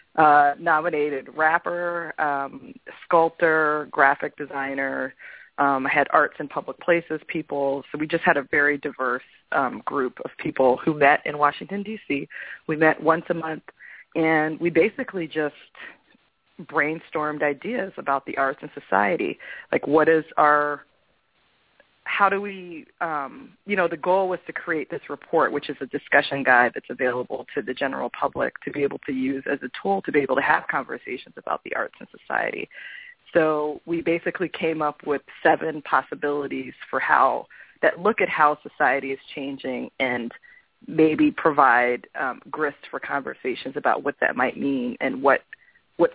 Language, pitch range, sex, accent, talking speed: English, 140-170 Hz, female, American, 165 wpm